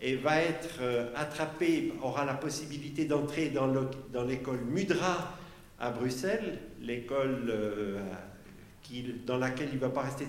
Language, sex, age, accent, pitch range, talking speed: French, male, 50-69, French, 125-150 Hz, 150 wpm